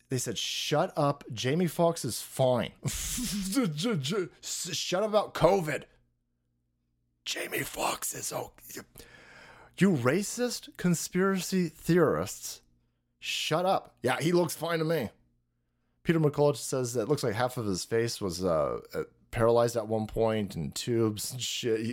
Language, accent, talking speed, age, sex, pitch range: English, American, 135 wpm, 30-49, male, 115-170 Hz